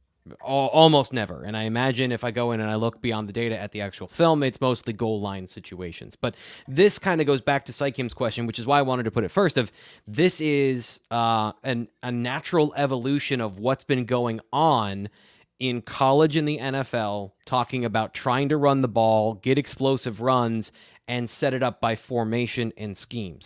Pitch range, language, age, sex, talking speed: 115-150 Hz, English, 20-39, male, 200 wpm